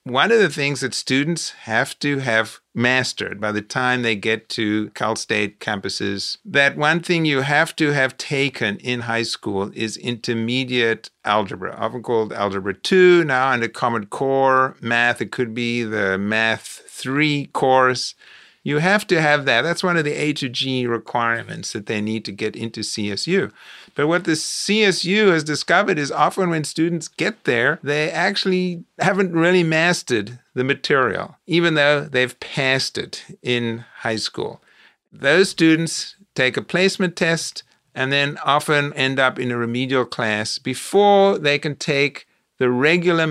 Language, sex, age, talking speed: English, male, 50-69, 160 wpm